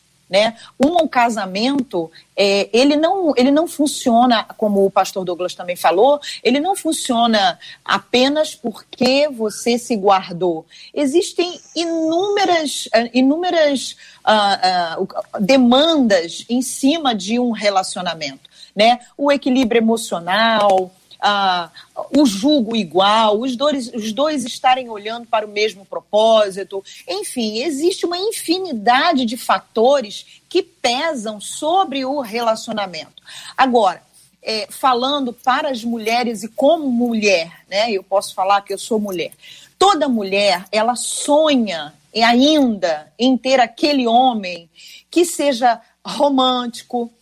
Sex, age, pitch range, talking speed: female, 40-59, 205-280 Hz, 110 wpm